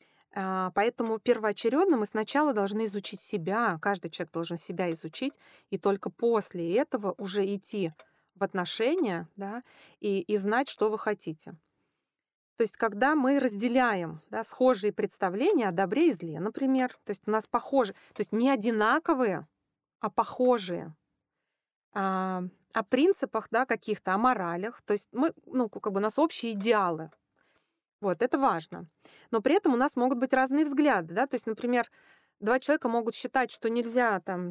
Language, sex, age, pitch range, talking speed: Russian, female, 20-39, 195-255 Hz, 160 wpm